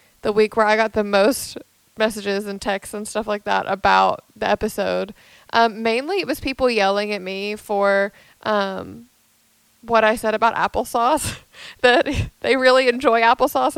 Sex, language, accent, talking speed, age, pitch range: female, English, American, 160 wpm, 20-39, 210-245 Hz